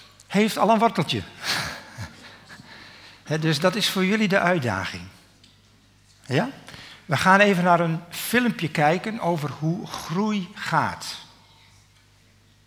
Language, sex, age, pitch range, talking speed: Dutch, male, 60-79, 105-145 Hz, 105 wpm